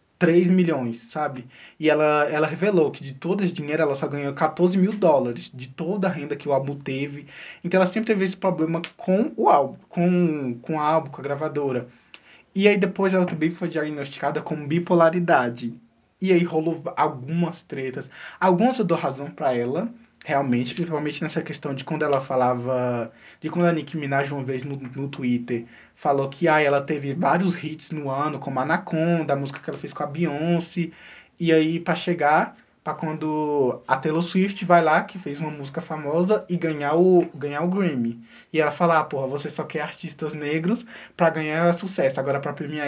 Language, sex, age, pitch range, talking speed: Portuguese, male, 20-39, 140-175 Hz, 190 wpm